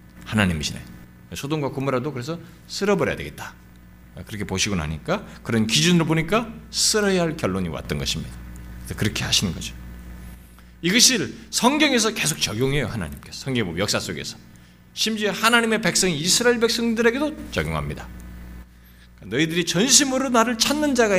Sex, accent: male, native